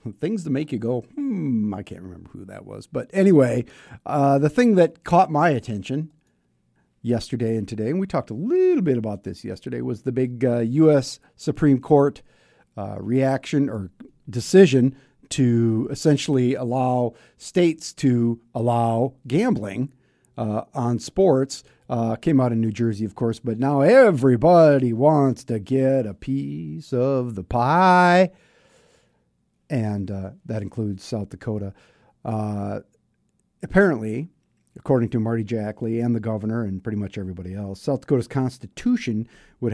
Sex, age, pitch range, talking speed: male, 50-69, 110-140 Hz, 145 wpm